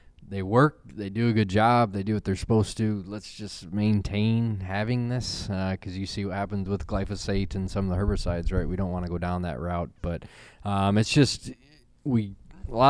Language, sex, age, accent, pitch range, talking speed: English, male, 20-39, American, 95-110 Hz, 220 wpm